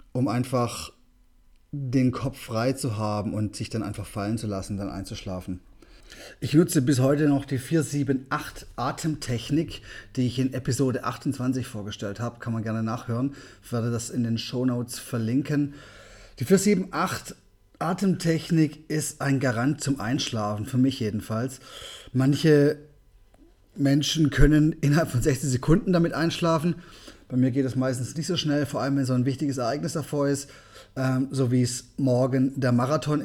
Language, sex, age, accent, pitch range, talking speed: German, male, 30-49, German, 120-150 Hz, 150 wpm